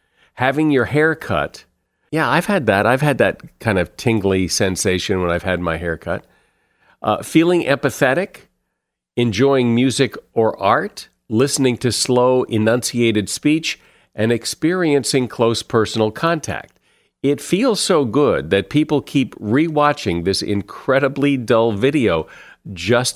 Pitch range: 105-145 Hz